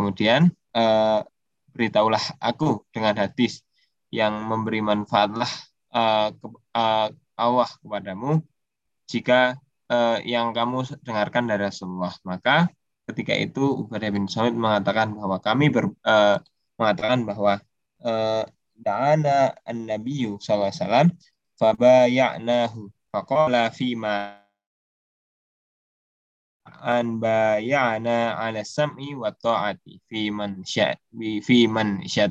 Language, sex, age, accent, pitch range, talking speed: Indonesian, male, 10-29, native, 105-130 Hz, 90 wpm